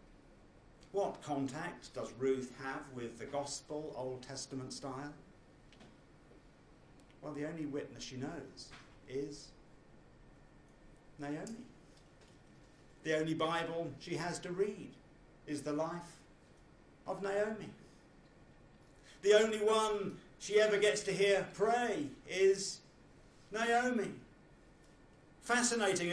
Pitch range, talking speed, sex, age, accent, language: 130-175 Hz, 100 wpm, male, 50-69, British, English